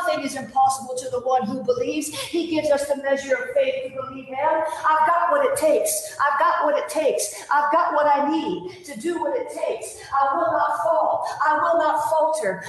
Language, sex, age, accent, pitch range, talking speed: English, female, 50-69, American, 265-320 Hz, 220 wpm